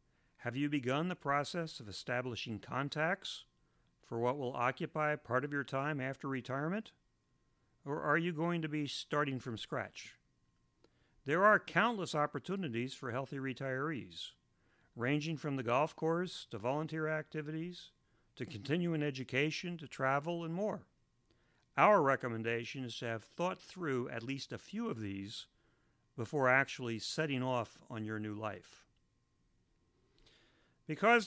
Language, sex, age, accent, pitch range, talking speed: English, male, 50-69, American, 120-155 Hz, 135 wpm